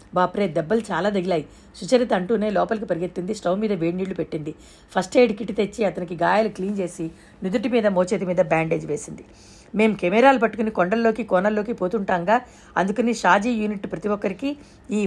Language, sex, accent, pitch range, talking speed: Telugu, female, native, 180-230 Hz, 150 wpm